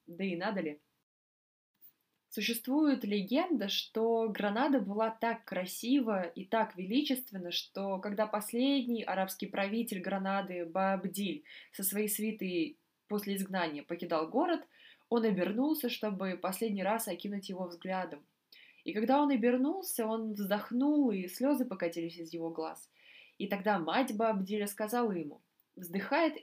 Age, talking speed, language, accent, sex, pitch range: 20-39, 125 wpm, Russian, native, female, 185-250 Hz